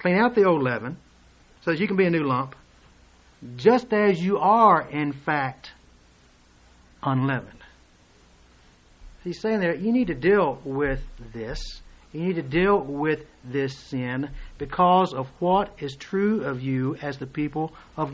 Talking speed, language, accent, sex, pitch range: 155 wpm, English, American, male, 150-225 Hz